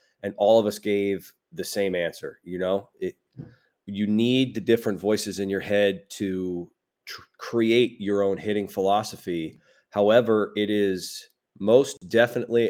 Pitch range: 100-115 Hz